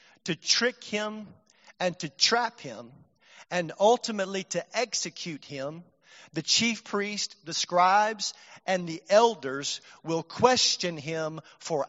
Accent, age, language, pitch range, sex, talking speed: American, 40-59, English, 185-240 Hz, male, 120 wpm